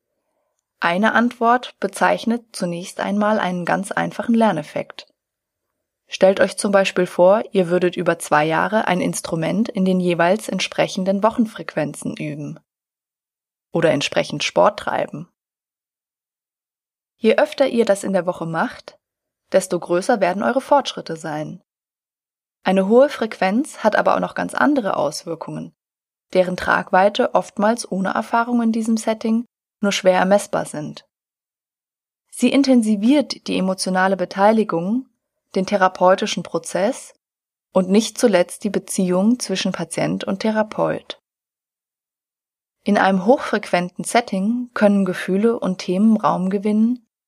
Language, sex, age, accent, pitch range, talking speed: German, female, 20-39, German, 185-225 Hz, 120 wpm